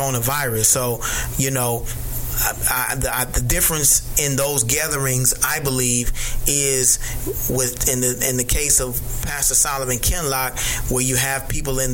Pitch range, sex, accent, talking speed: 120-135 Hz, male, American, 155 wpm